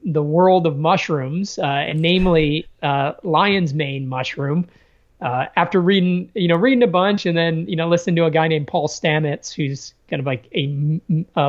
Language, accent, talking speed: English, American, 190 wpm